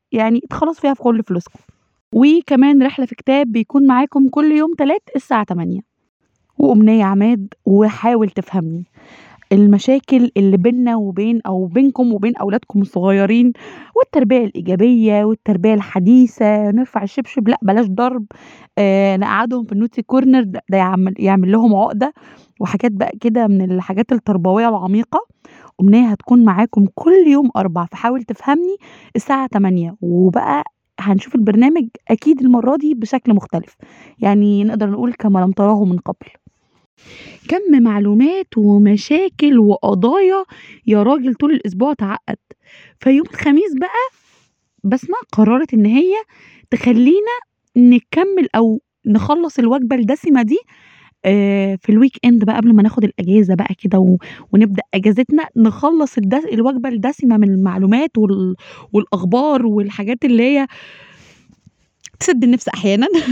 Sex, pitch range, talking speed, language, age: female, 205-265 Hz, 125 wpm, Arabic, 20-39